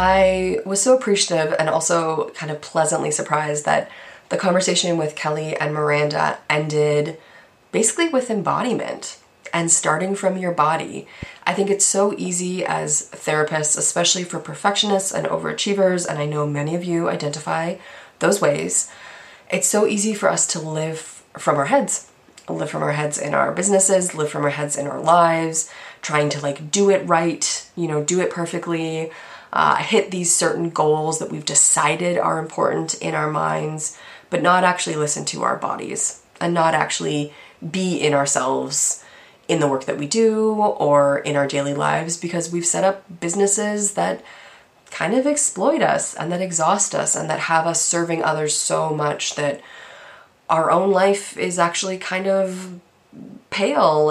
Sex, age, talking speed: female, 20-39, 165 wpm